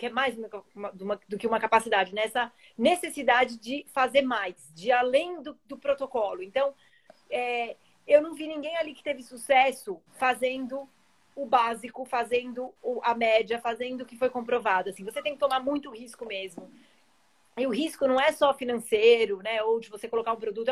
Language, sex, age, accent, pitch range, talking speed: Portuguese, female, 30-49, Brazilian, 235-290 Hz, 175 wpm